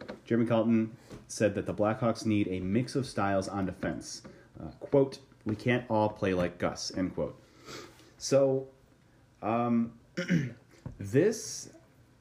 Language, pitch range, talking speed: English, 90-110 Hz, 130 wpm